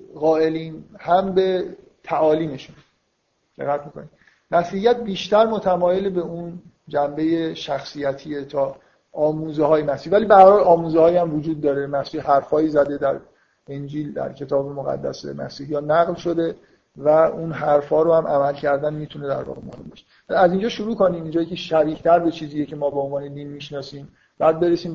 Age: 50-69